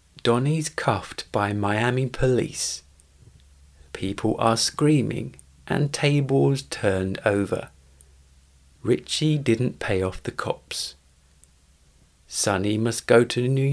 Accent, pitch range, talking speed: British, 80-130 Hz, 100 wpm